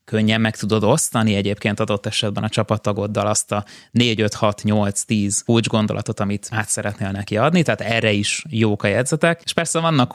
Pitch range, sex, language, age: 105-125 Hz, male, Hungarian, 20-39